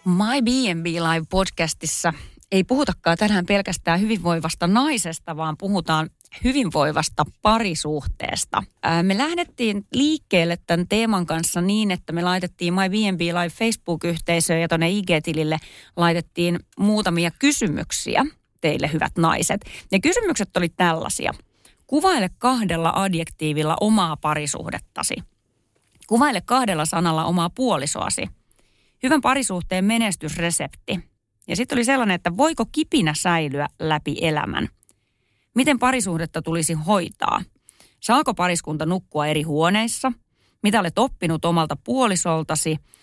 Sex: female